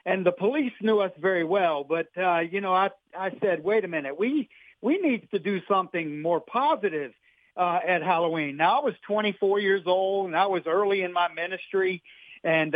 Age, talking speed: 50-69, 200 wpm